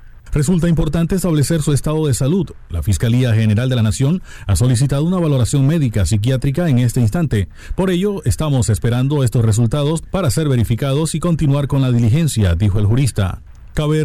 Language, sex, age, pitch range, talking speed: Spanish, male, 40-59, 115-150 Hz, 170 wpm